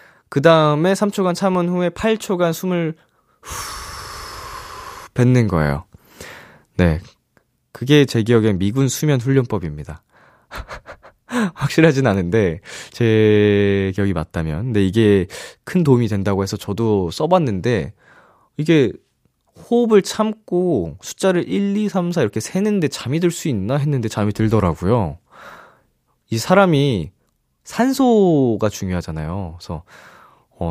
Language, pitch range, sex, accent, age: Korean, 100-160 Hz, male, native, 20-39